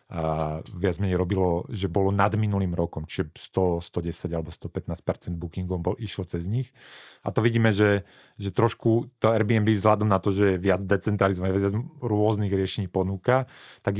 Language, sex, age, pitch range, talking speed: Slovak, male, 30-49, 85-105 Hz, 165 wpm